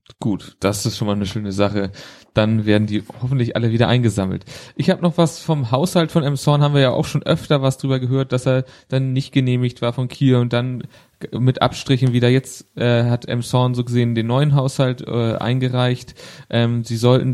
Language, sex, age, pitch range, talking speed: German, male, 30-49, 110-130 Hz, 210 wpm